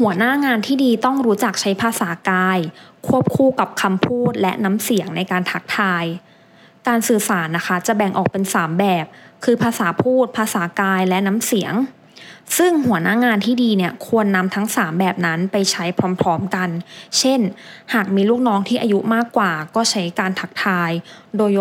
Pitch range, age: 180-230 Hz, 20-39